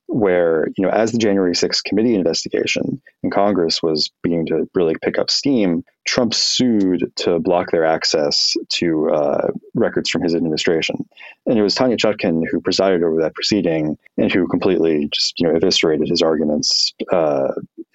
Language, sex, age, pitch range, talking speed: English, male, 30-49, 85-115 Hz, 165 wpm